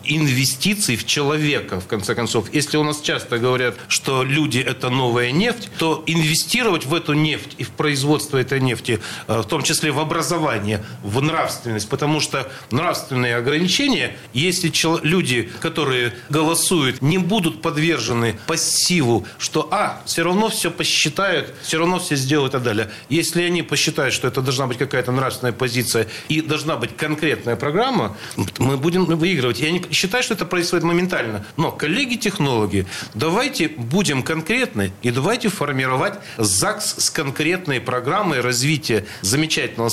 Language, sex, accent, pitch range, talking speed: Russian, male, native, 125-165 Hz, 140 wpm